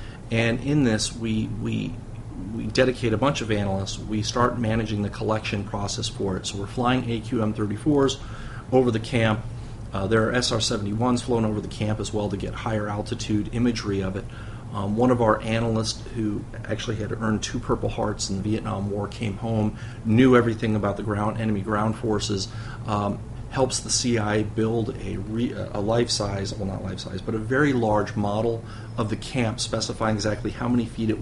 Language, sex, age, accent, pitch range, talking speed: English, male, 40-59, American, 105-120 Hz, 185 wpm